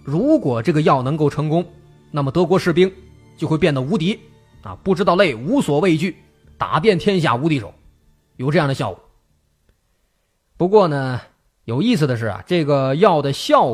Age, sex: 20-39, male